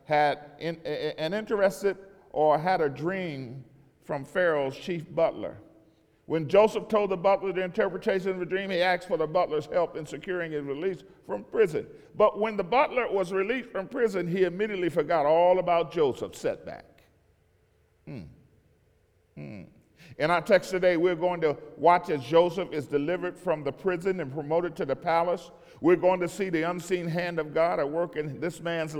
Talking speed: 175 wpm